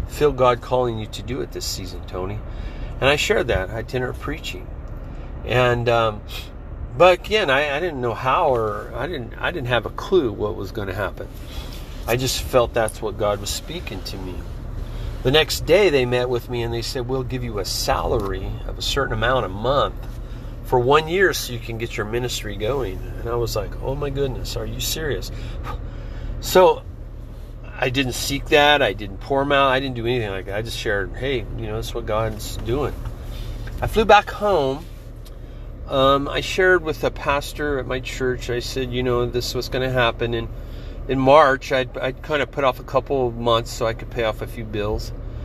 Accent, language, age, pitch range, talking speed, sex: American, English, 40-59, 110-130 Hz, 210 wpm, male